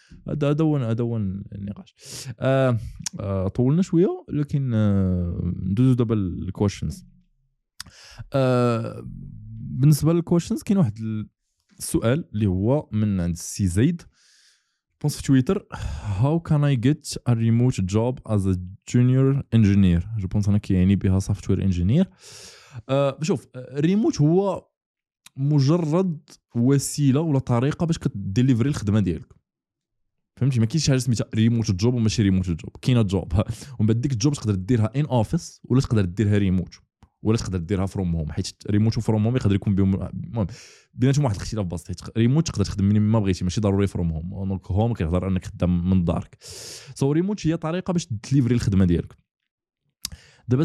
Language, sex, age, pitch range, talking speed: Arabic, male, 20-39, 100-140 Hz, 150 wpm